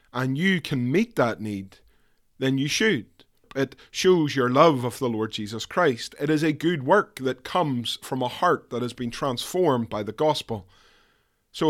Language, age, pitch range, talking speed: English, 30-49, 120-155 Hz, 185 wpm